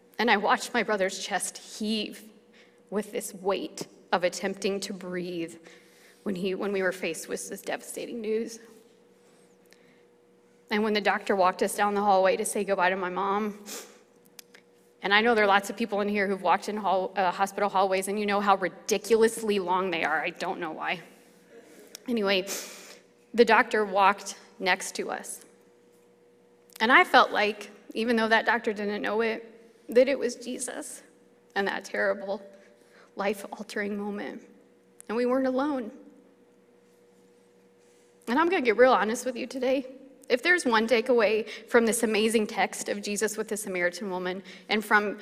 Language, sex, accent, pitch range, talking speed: English, female, American, 190-230 Hz, 165 wpm